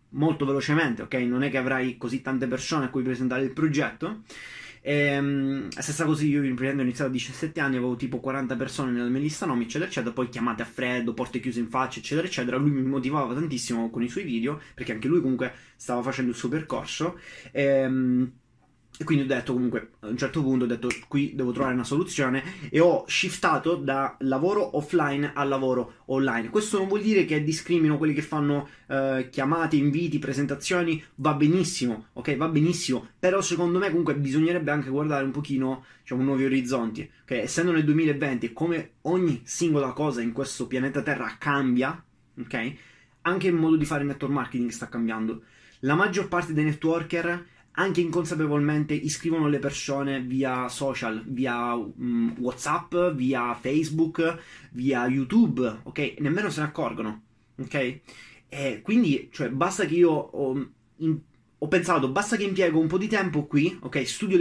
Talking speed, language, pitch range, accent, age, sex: 170 wpm, Italian, 130-160 Hz, native, 20-39, male